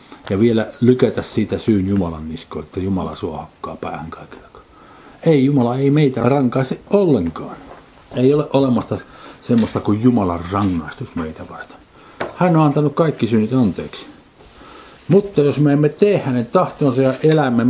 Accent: native